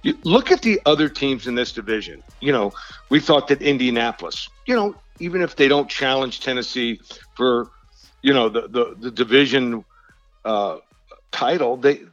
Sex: male